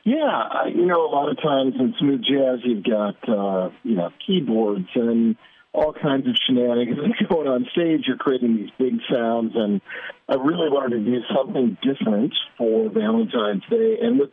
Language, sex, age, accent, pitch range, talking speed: English, male, 50-69, American, 115-170 Hz, 175 wpm